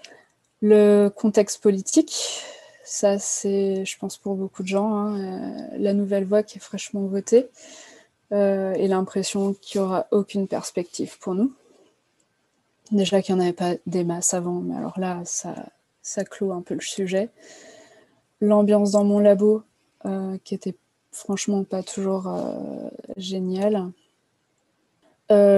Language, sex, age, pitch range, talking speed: French, female, 20-39, 190-215 Hz, 145 wpm